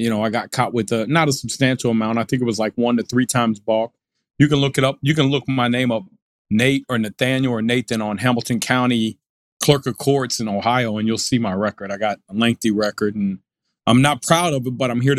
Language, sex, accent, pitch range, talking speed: English, male, American, 115-145 Hz, 250 wpm